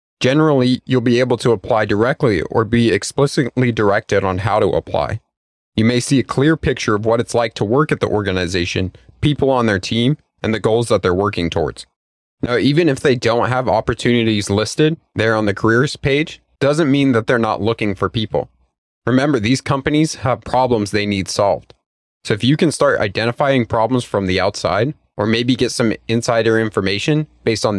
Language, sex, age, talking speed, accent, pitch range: English, male, 30-49, 190 wpm, American, 100-130 Hz